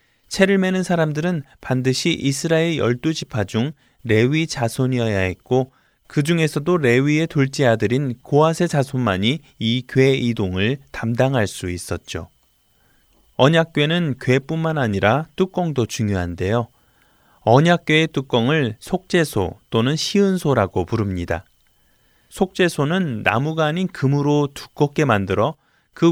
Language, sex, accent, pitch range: Korean, male, native, 110-160 Hz